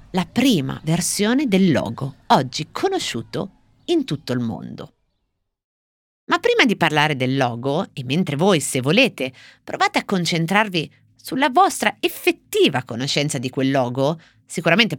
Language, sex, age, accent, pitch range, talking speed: Italian, female, 30-49, native, 130-195 Hz, 130 wpm